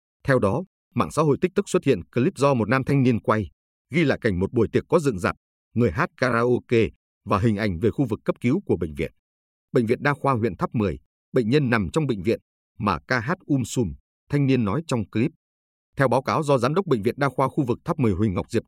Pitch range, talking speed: 100-140 Hz, 250 wpm